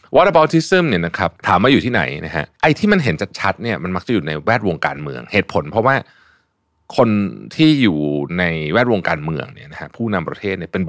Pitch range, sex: 80-120 Hz, male